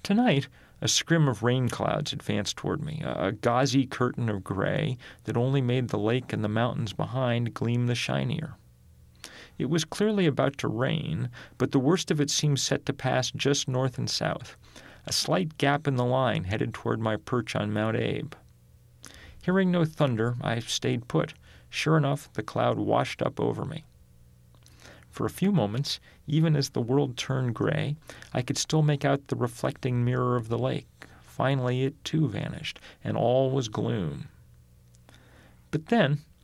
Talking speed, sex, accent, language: 170 wpm, male, American, English